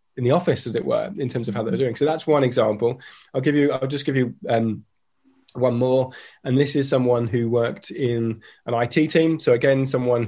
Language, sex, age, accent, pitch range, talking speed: English, male, 20-39, British, 115-135 Hz, 230 wpm